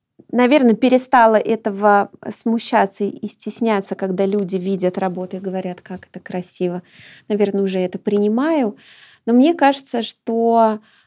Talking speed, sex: 125 wpm, female